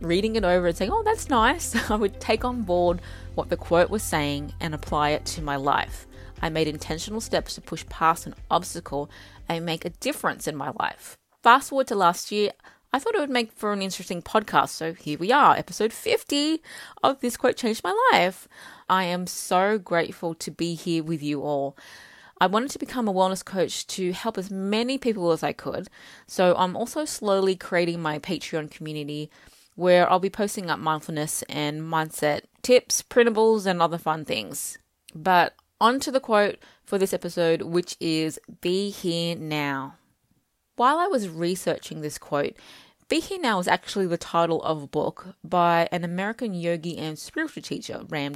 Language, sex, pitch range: English, female, 160-210 Hz